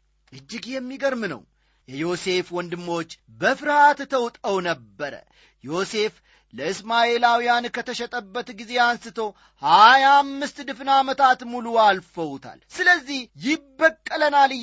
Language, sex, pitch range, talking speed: Amharic, male, 165-250 Hz, 80 wpm